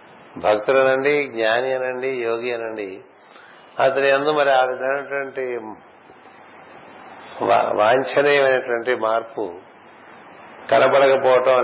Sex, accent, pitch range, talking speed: male, native, 115-135 Hz, 65 wpm